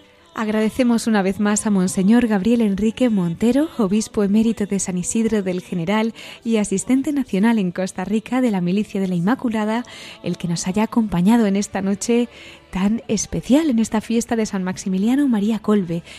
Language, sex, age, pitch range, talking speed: Spanish, female, 20-39, 200-245 Hz, 170 wpm